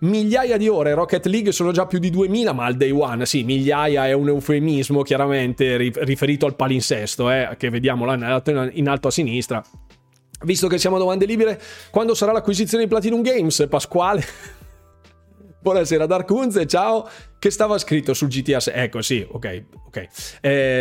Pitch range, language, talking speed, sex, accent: 125-165 Hz, Italian, 165 wpm, male, native